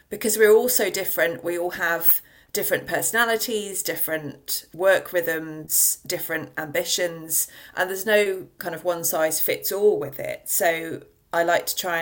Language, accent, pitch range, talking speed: English, British, 160-190 Hz, 155 wpm